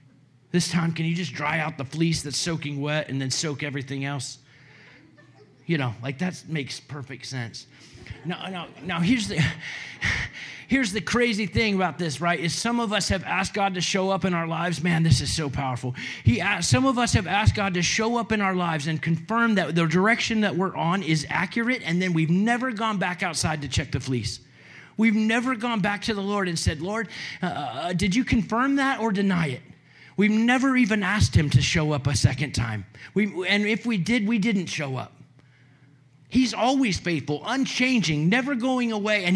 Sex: male